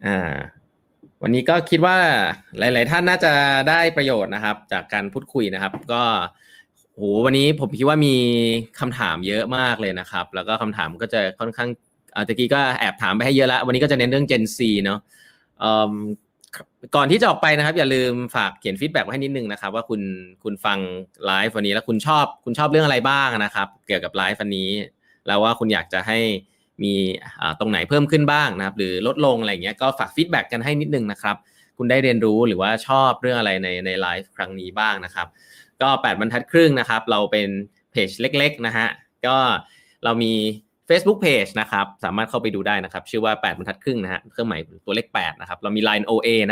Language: Thai